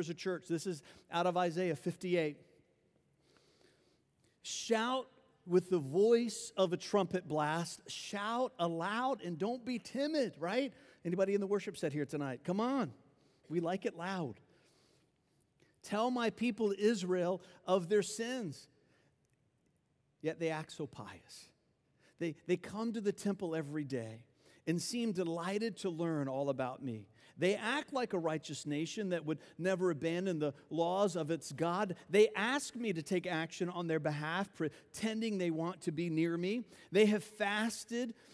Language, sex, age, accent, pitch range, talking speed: English, male, 50-69, American, 155-220 Hz, 155 wpm